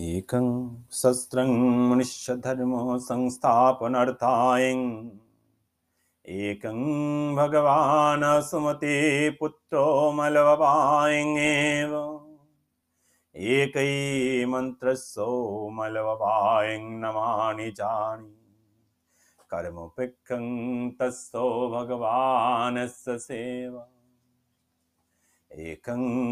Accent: native